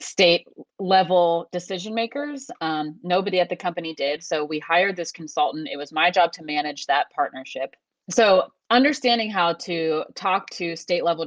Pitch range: 155-195 Hz